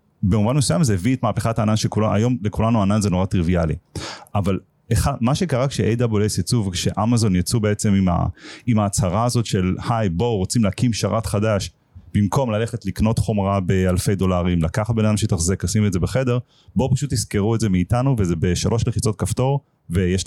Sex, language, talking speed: male, Hebrew, 175 wpm